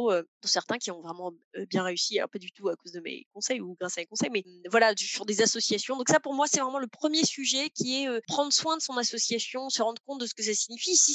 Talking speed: 300 wpm